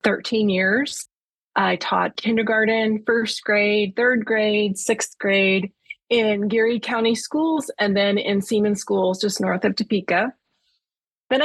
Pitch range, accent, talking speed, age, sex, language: 190-230 Hz, American, 130 wpm, 30-49, female, English